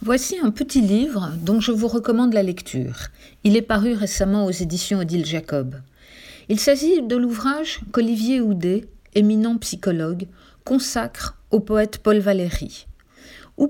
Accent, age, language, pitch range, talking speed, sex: French, 50-69, French, 185-240 Hz, 140 wpm, female